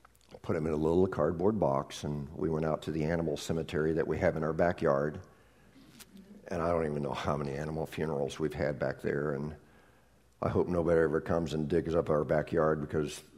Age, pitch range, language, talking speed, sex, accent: 50-69, 80-105 Hz, English, 205 wpm, male, American